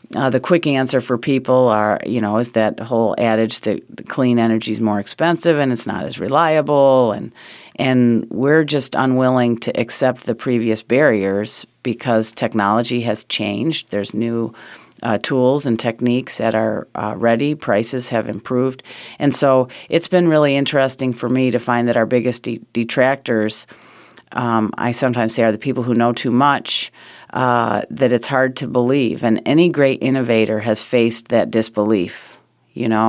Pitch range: 110-130 Hz